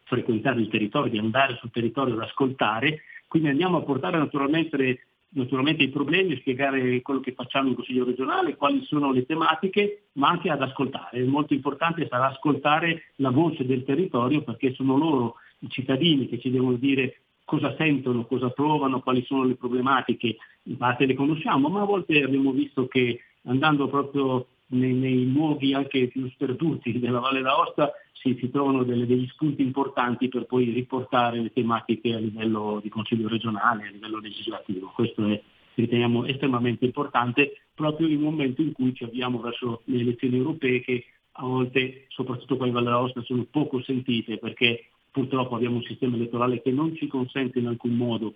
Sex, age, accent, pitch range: male, 50-69, native, 120-140 Hz